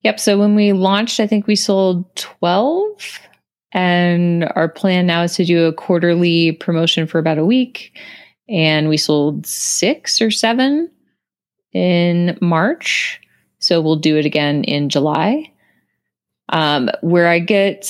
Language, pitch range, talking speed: English, 155-205 Hz, 145 wpm